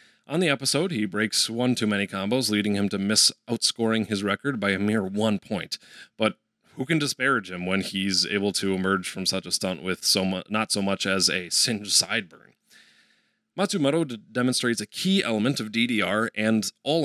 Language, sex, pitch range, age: English, male, 100-125 Hz, 30-49